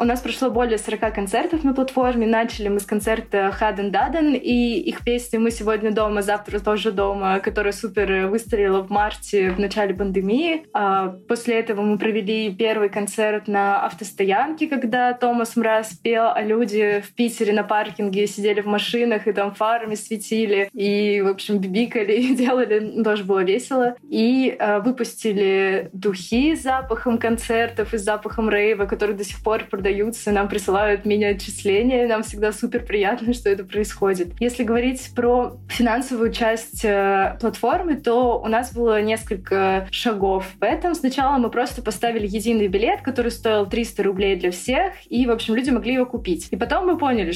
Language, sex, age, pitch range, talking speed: Russian, female, 20-39, 205-240 Hz, 160 wpm